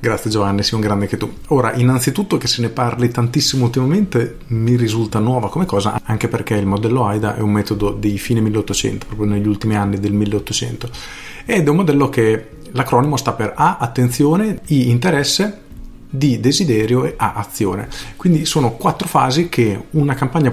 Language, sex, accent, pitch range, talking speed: Italian, male, native, 110-140 Hz, 180 wpm